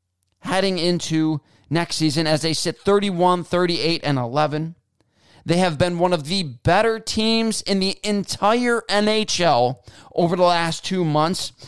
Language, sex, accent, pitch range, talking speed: English, male, American, 145-175 Hz, 145 wpm